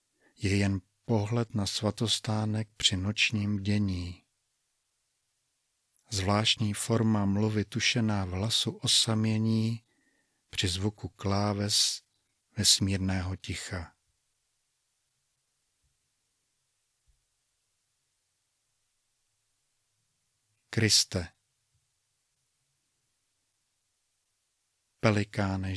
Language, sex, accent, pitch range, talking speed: Czech, male, native, 95-115 Hz, 50 wpm